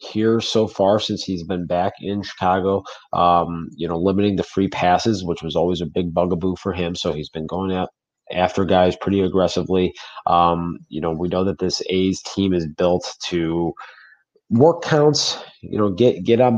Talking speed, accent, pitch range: 190 wpm, American, 90-100 Hz